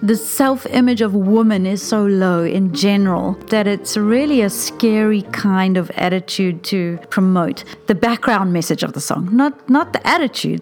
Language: English